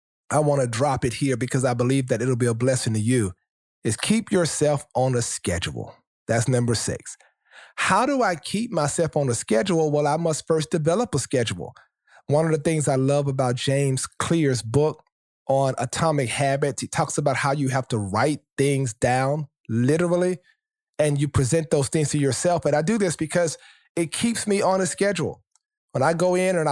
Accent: American